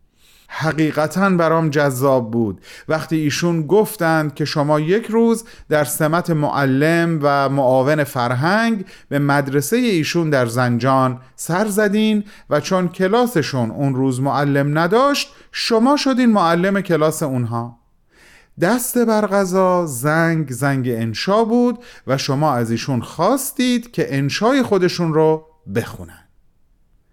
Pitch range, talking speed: 125-175 Hz, 115 wpm